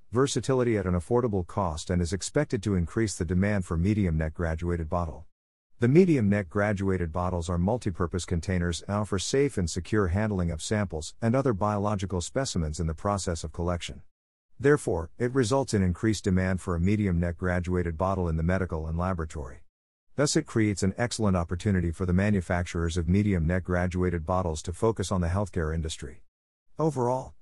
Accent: American